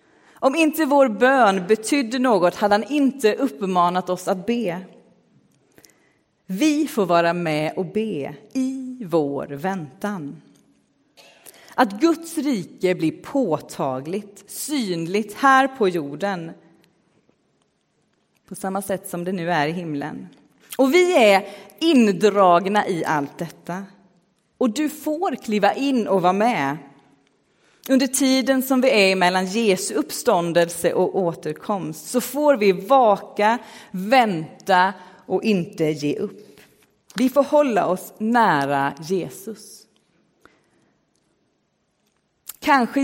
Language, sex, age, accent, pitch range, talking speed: Swedish, female, 30-49, native, 175-255 Hz, 115 wpm